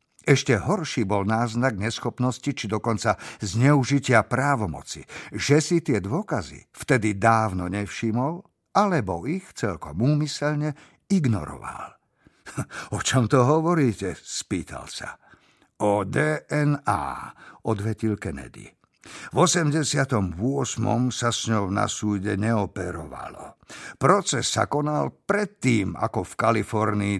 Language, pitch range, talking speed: Slovak, 105-145 Hz, 100 wpm